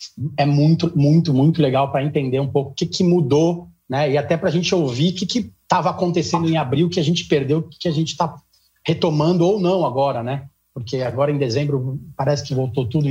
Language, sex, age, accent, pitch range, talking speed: Portuguese, male, 30-49, Brazilian, 135-170 Hz, 220 wpm